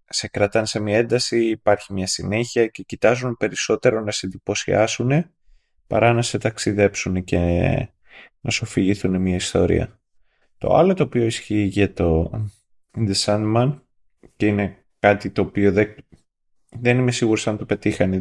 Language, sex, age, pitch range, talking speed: Greek, male, 20-39, 95-120 Hz, 150 wpm